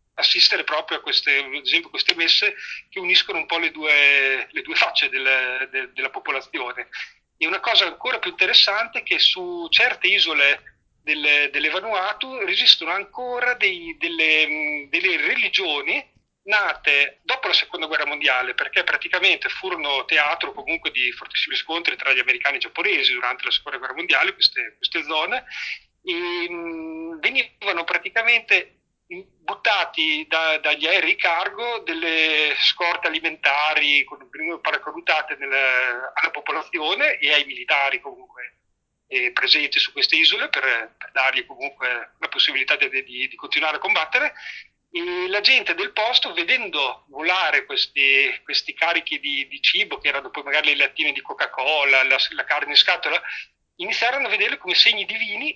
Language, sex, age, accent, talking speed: Italian, male, 40-59, native, 150 wpm